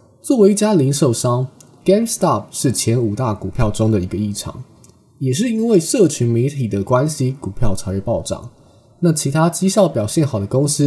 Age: 20-39